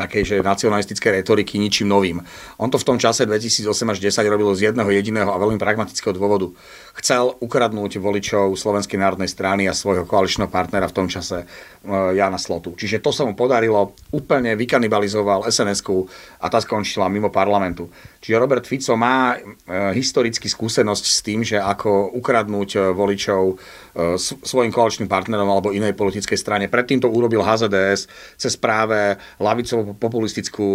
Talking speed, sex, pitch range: 145 wpm, male, 100-115 Hz